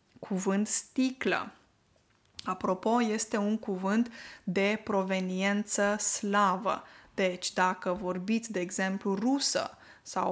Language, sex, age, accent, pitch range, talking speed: Romanian, female, 20-39, native, 195-245 Hz, 95 wpm